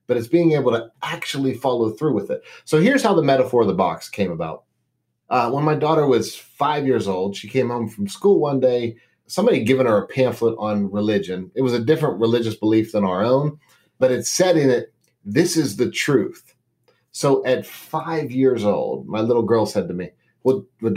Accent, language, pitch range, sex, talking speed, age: American, English, 115-160 Hz, male, 210 wpm, 30-49